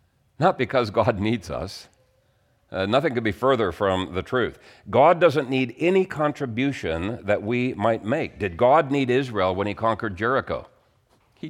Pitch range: 105-135 Hz